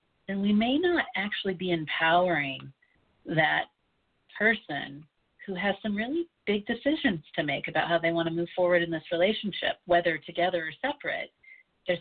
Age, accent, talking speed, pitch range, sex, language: 40-59, American, 160 wpm, 165-210 Hz, female, English